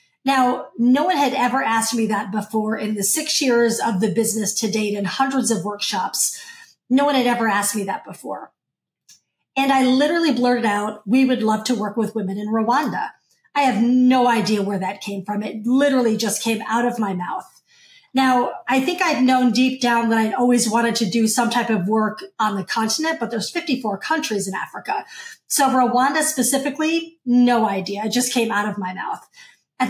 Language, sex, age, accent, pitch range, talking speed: English, female, 40-59, American, 220-260 Hz, 200 wpm